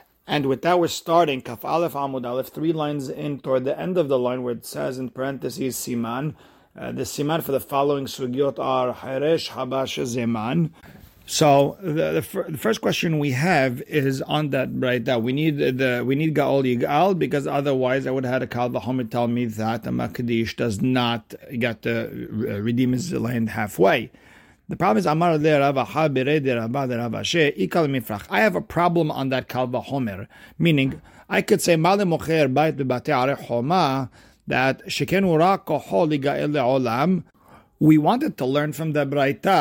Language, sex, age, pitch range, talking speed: English, male, 40-59, 125-155 Hz, 150 wpm